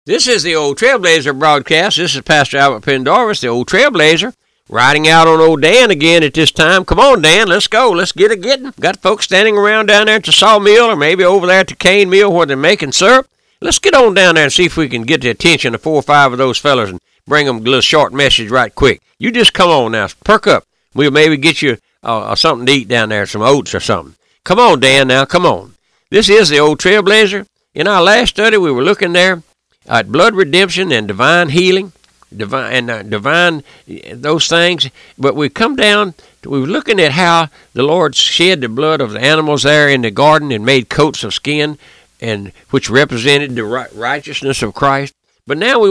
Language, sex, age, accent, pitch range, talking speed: English, male, 60-79, American, 135-185 Hz, 220 wpm